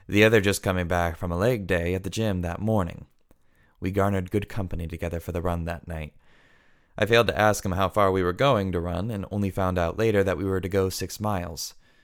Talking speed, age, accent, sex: 240 wpm, 20-39, American, male